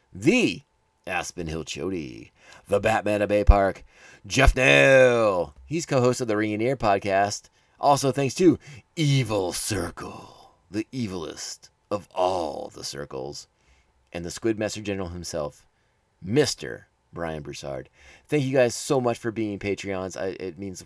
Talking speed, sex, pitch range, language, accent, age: 145 wpm, male, 95-130 Hz, English, American, 30-49